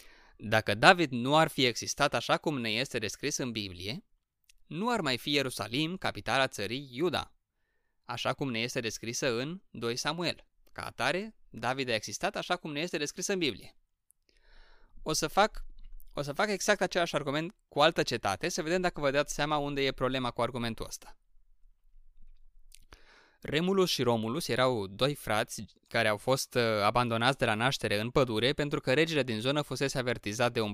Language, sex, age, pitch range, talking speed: Romanian, male, 20-39, 115-150 Hz, 170 wpm